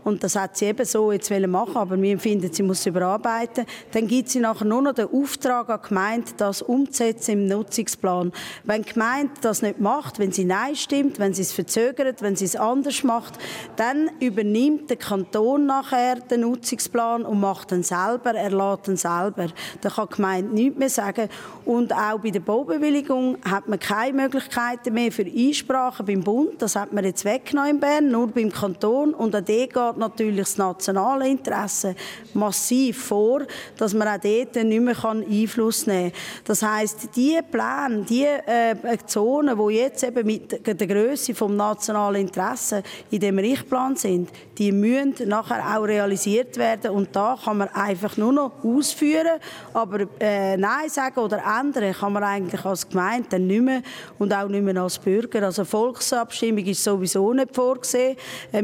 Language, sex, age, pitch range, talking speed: German, female, 20-39, 200-250 Hz, 175 wpm